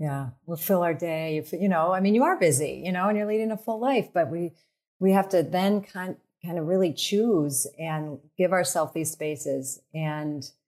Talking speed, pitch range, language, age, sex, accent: 200 wpm, 150-175 Hz, English, 40-59, female, American